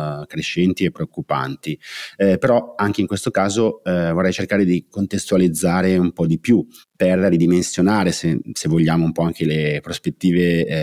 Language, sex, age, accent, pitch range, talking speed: Italian, male, 30-49, native, 80-95 Hz, 160 wpm